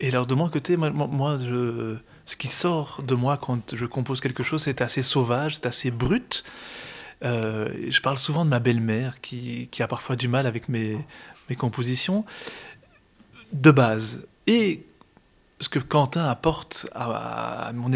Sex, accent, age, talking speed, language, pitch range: male, French, 20-39, 170 wpm, French, 125-150 Hz